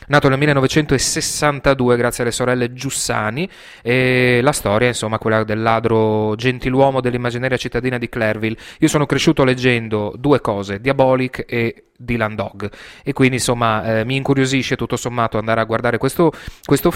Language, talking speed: Italian, 150 wpm